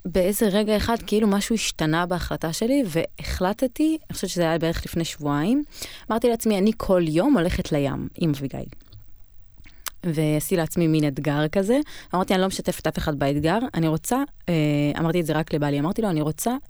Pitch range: 150-215 Hz